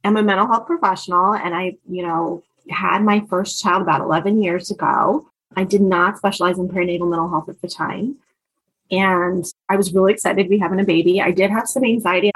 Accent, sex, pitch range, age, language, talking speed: American, female, 180-205 Hz, 20-39, English, 210 wpm